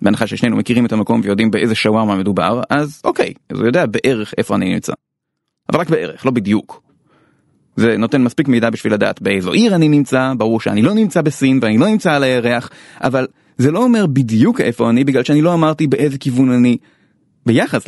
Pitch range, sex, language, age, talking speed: 120-180 Hz, male, Hebrew, 30-49, 190 wpm